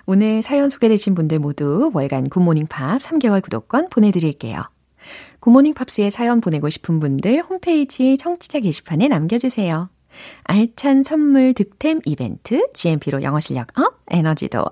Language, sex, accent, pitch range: Korean, female, native, 160-270 Hz